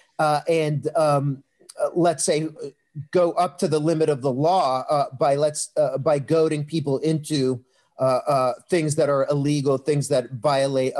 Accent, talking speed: American, 170 wpm